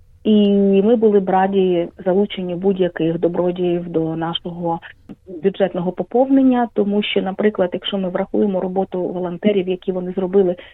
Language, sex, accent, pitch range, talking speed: Ukrainian, female, native, 175-200 Hz, 130 wpm